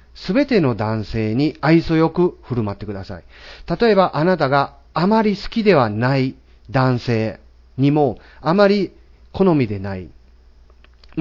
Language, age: Japanese, 40-59